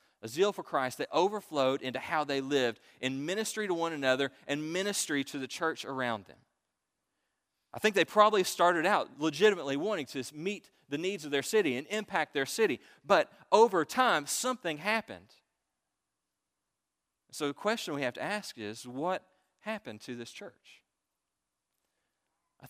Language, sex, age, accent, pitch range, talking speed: English, male, 40-59, American, 125-170 Hz, 160 wpm